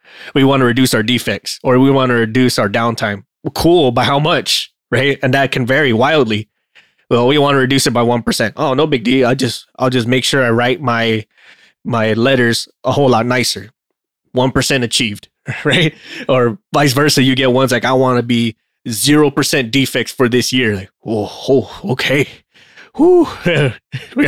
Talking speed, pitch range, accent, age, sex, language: 190 wpm, 115-135 Hz, American, 20-39, male, English